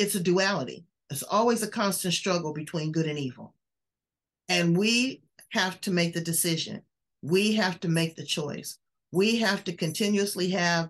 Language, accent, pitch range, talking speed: English, American, 170-220 Hz, 165 wpm